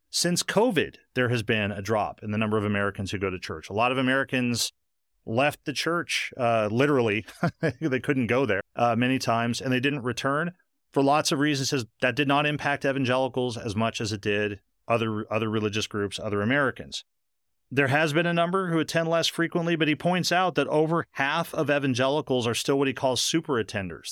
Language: English